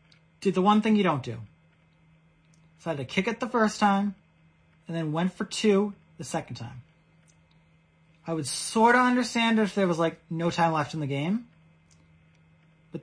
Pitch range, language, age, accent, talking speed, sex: 155-195 Hz, English, 30-49, American, 185 wpm, male